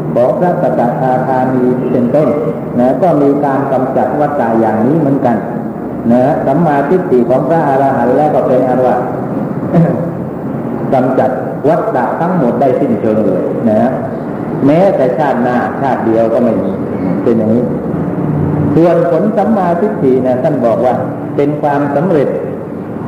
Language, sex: Thai, male